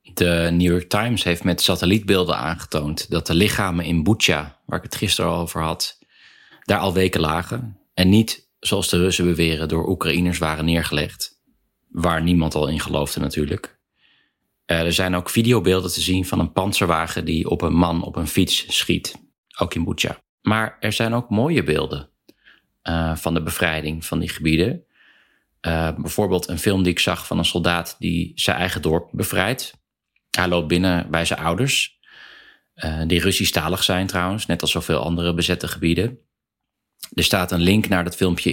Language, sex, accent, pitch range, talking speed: Dutch, male, Dutch, 80-95 Hz, 175 wpm